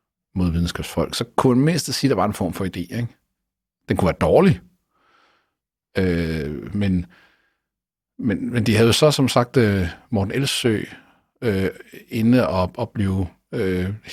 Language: Danish